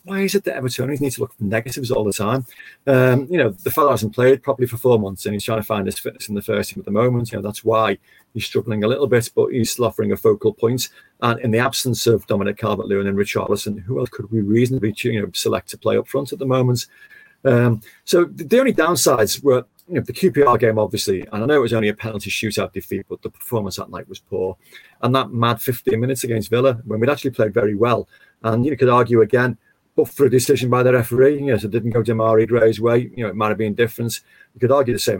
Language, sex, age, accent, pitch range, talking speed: English, male, 40-59, British, 110-130 Hz, 265 wpm